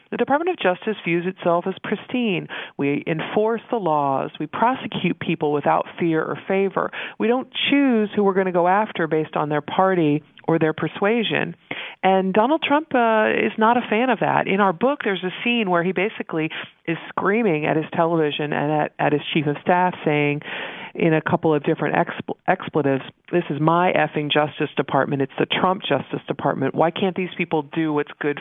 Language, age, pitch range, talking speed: English, 40-59, 150-190 Hz, 195 wpm